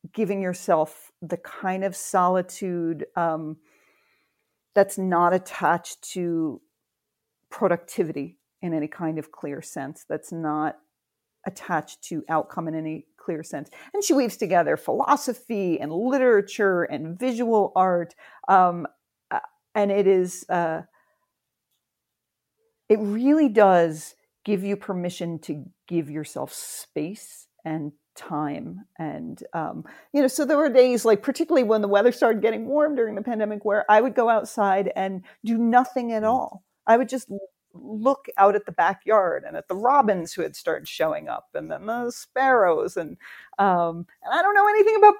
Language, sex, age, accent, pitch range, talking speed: English, female, 40-59, American, 175-245 Hz, 150 wpm